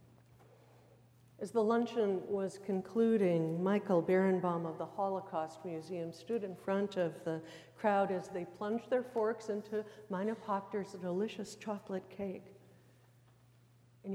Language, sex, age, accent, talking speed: English, female, 60-79, American, 120 wpm